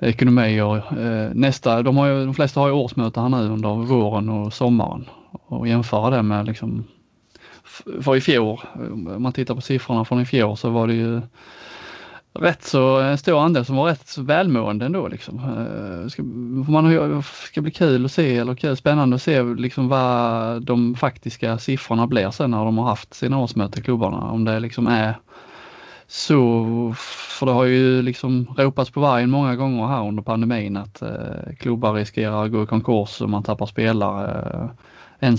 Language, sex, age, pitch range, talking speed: Swedish, male, 20-39, 110-130 Hz, 180 wpm